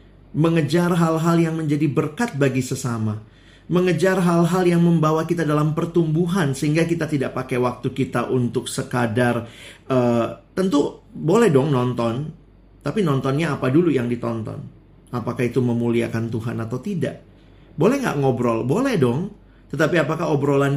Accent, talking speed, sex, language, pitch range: native, 135 wpm, male, Indonesian, 120-155 Hz